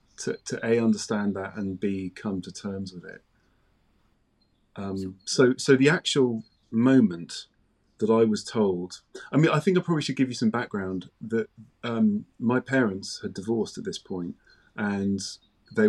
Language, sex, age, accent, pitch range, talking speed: English, male, 30-49, British, 95-115 Hz, 165 wpm